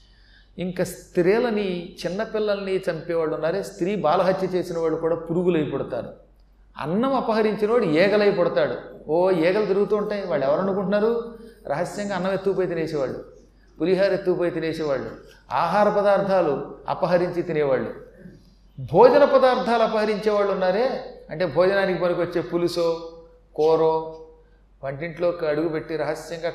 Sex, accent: male, native